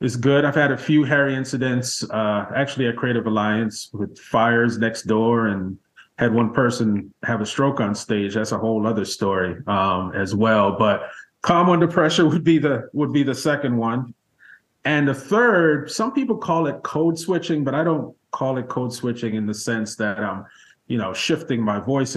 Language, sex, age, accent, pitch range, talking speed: English, male, 30-49, American, 110-140 Hz, 195 wpm